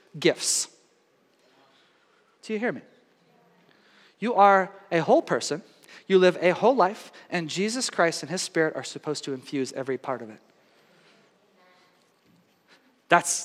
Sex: male